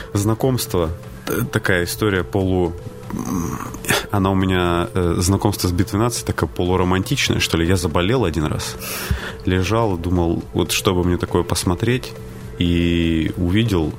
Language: Russian